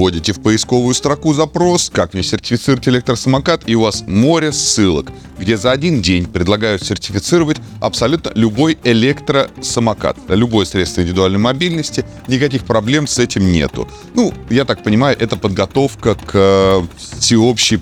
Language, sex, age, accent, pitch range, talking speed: Russian, male, 30-49, native, 90-120 Hz, 140 wpm